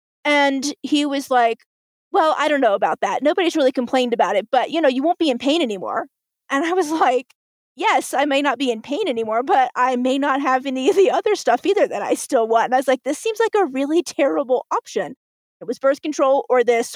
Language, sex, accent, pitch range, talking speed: English, female, American, 230-285 Hz, 240 wpm